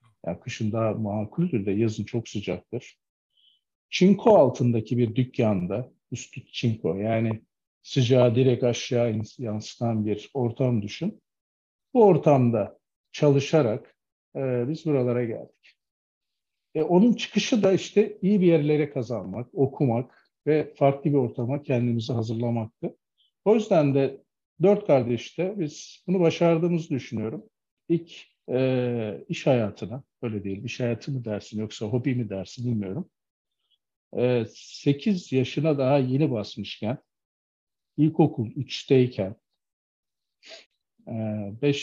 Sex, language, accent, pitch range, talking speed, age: male, Turkish, native, 110-150 Hz, 110 wpm, 50-69